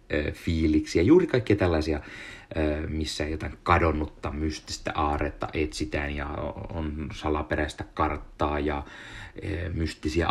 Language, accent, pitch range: Finnish, native, 75-100 Hz